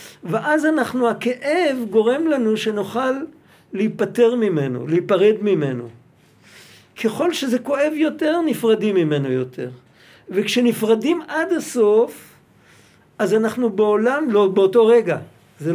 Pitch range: 180-250 Hz